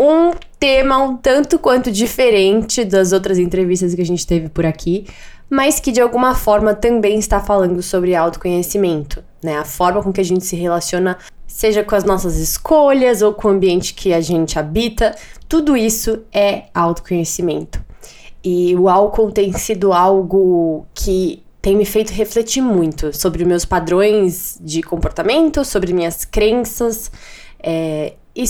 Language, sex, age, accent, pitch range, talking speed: Portuguese, female, 20-39, Brazilian, 175-215 Hz, 150 wpm